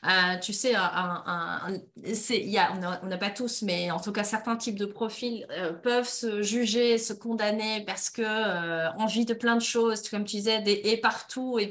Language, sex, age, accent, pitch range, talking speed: French, female, 30-49, French, 205-245 Hz, 215 wpm